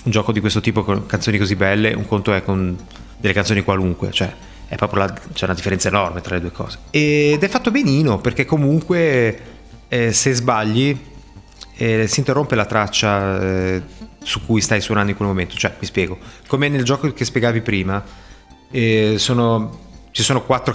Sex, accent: male, native